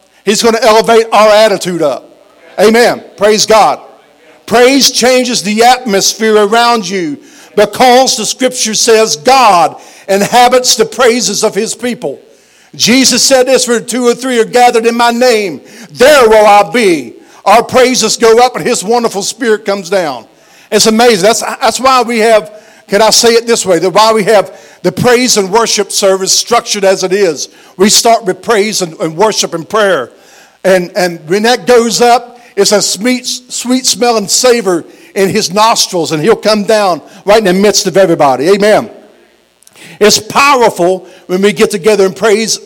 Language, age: English, 50-69